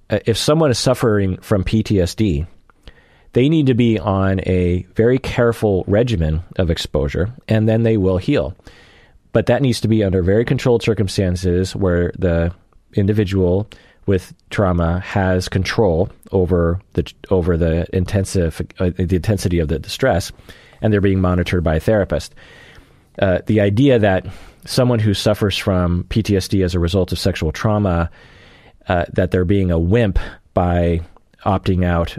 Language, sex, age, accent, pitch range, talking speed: English, male, 30-49, American, 90-110 Hz, 150 wpm